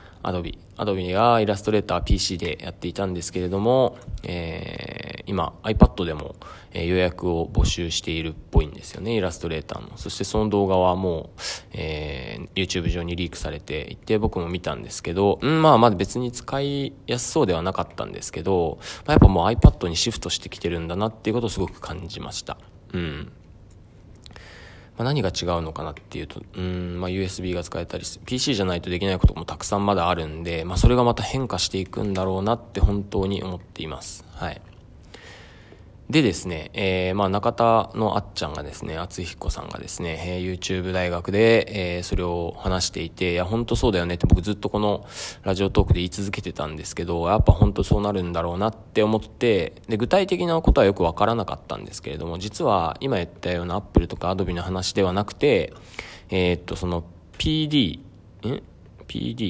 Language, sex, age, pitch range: Japanese, male, 20-39, 85-105 Hz